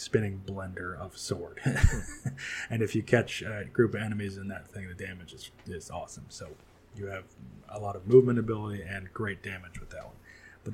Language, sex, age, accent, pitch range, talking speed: English, male, 30-49, American, 95-110 Hz, 195 wpm